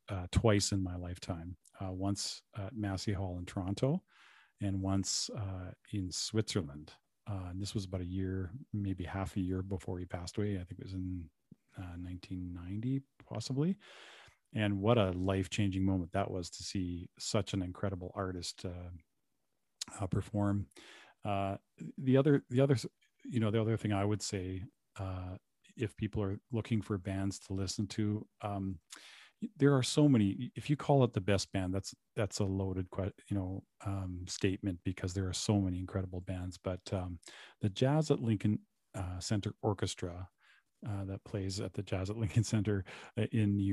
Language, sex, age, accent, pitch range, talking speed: English, male, 40-59, American, 95-110 Hz, 175 wpm